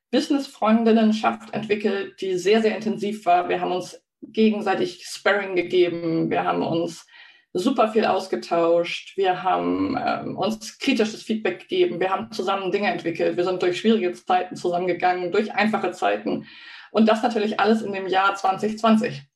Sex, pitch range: female, 190-235 Hz